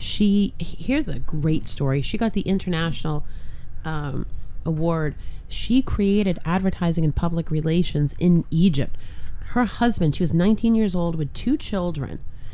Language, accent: English, American